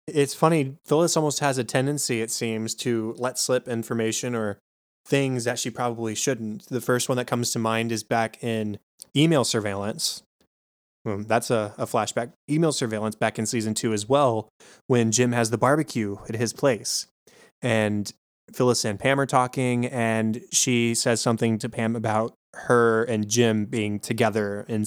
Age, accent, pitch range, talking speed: 20-39, American, 110-125 Hz, 170 wpm